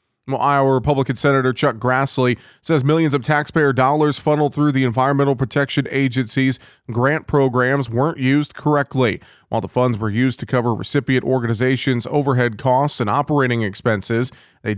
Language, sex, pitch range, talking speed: English, male, 120-140 Hz, 145 wpm